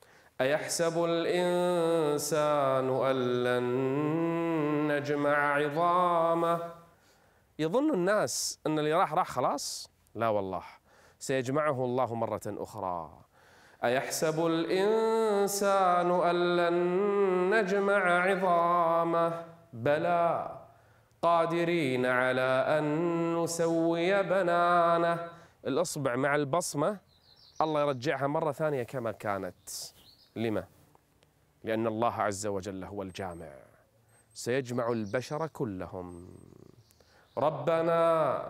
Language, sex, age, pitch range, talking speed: Arabic, male, 30-49, 125-170 Hz, 80 wpm